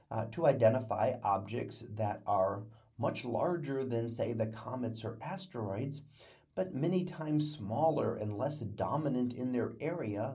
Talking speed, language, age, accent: 140 wpm, English, 40-59, American